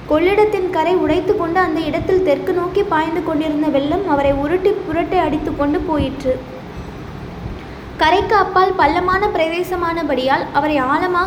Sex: female